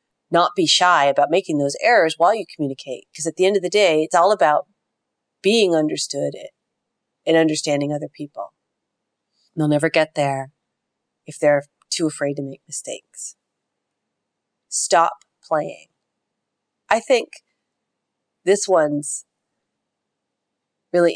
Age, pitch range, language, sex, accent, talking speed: 40-59, 145-180 Hz, English, female, American, 130 wpm